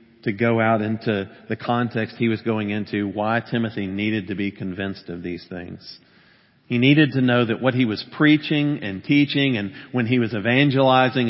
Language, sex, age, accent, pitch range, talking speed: English, male, 40-59, American, 100-130 Hz, 185 wpm